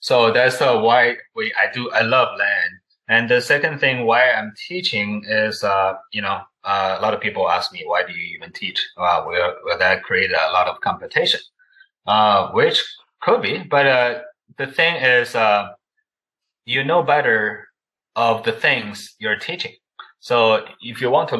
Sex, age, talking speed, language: male, 20-39, 180 wpm, English